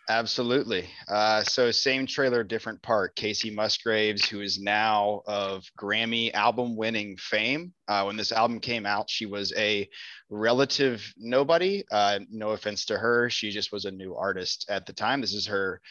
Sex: male